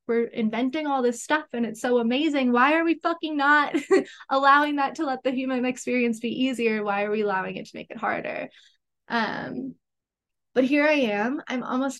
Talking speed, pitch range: 195 wpm, 225-270 Hz